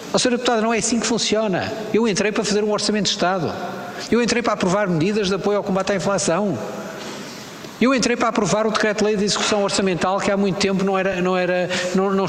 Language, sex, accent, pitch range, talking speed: Portuguese, male, Portuguese, 185-230 Hz, 220 wpm